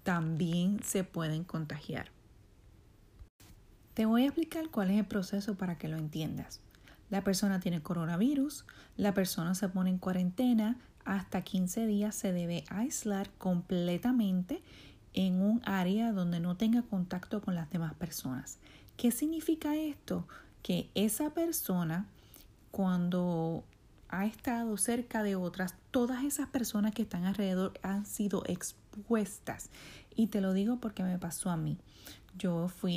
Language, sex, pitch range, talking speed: Spanish, female, 175-225 Hz, 140 wpm